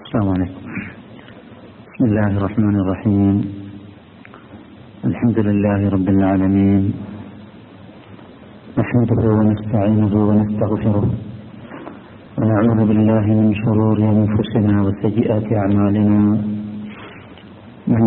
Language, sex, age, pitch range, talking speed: Malayalam, male, 50-69, 105-115 Hz, 70 wpm